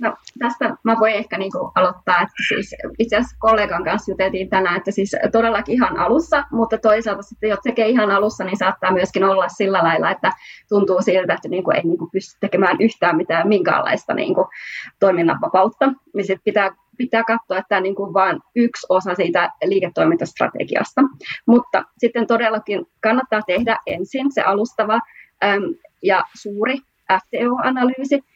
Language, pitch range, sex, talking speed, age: Finnish, 190-230 Hz, female, 150 wpm, 20-39